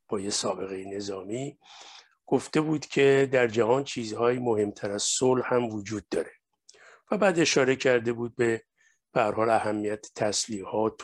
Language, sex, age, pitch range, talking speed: Persian, male, 50-69, 110-130 Hz, 130 wpm